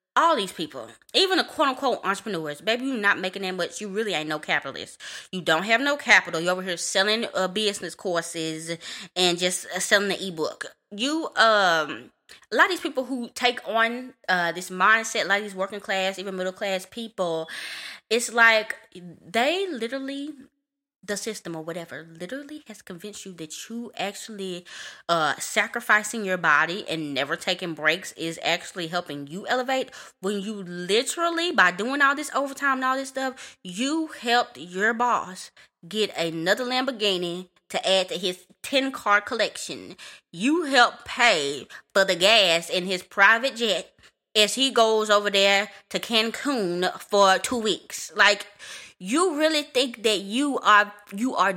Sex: female